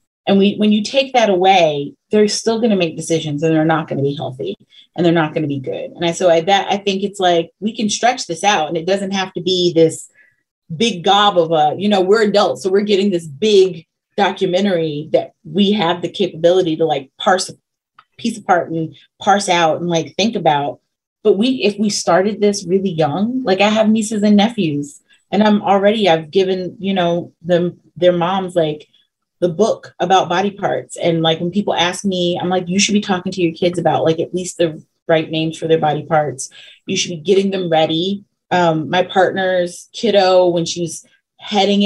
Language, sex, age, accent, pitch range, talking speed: English, female, 30-49, American, 165-205 Hz, 215 wpm